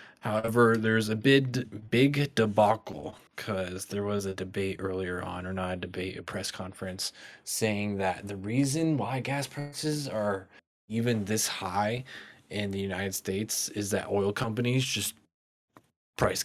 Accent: American